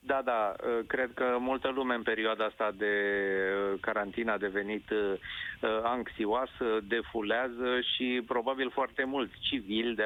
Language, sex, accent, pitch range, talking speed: Romanian, male, native, 105-140 Hz, 125 wpm